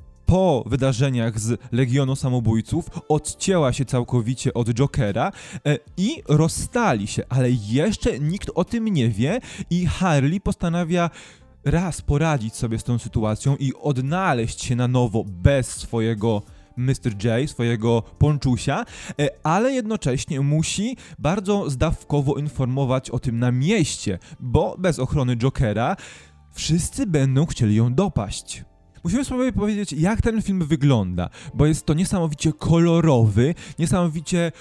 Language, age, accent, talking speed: Polish, 20-39, native, 125 wpm